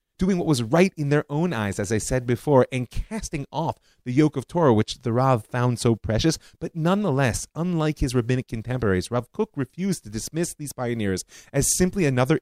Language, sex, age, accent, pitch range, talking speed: English, male, 30-49, American, 110-145 Hz, 200 wpm